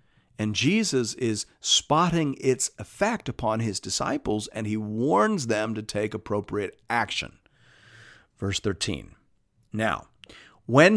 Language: English